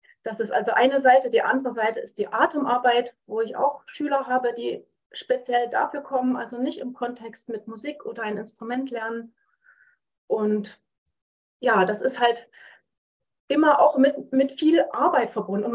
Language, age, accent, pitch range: German, 30-49, German, 225-270 Hz